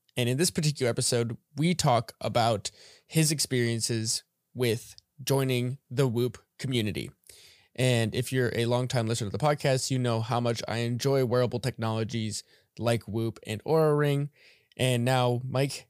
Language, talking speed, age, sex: English, 150 wpm, 20-39, male